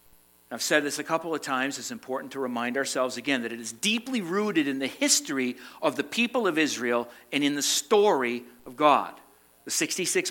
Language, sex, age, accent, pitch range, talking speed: English, male, 50-69, American, 125-160 Hz, 200 wpm